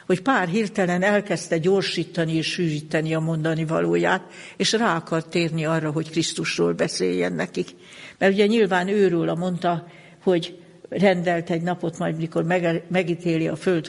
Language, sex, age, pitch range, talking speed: Hungarian, female, 60-79, 165-185 Hz, 145 wpm